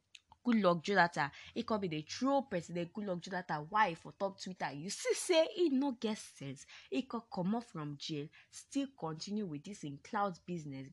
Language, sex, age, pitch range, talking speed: English, female, 20-39, 170-235 Hz, 200 wpm